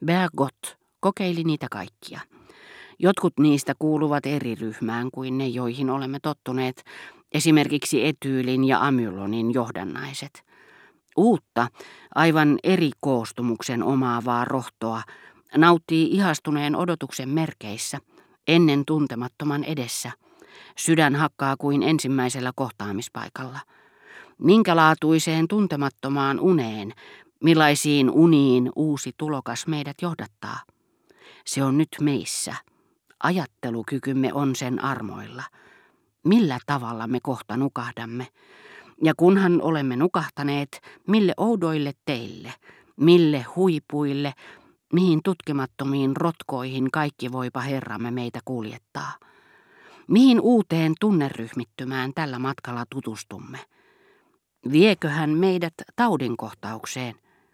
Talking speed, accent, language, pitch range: 90 wpm, native, Finnish, 125-160 Hz